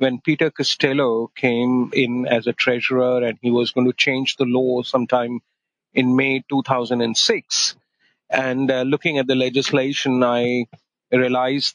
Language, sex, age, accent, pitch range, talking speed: English, male, 40-59, Indian, 120-135 Hz, 145 wpm